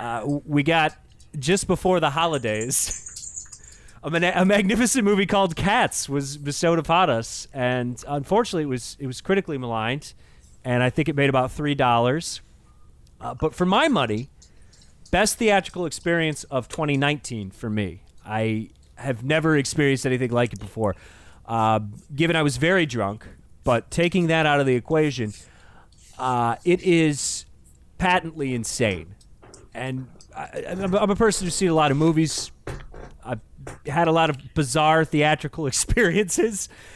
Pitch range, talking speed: 120-180 Hz, 145 wpm